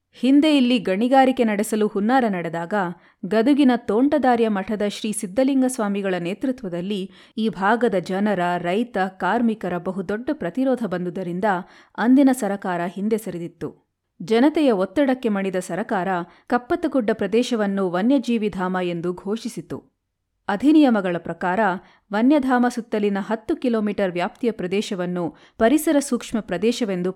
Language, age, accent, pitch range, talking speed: Kannada, 30-49, native, 185-240 Hz, 95 wpm